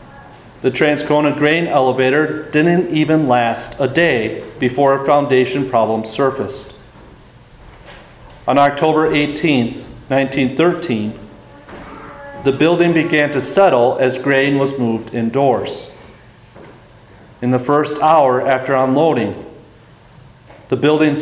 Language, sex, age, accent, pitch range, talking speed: English, male, 40-59, American, 125-150 Hz, 100 wpm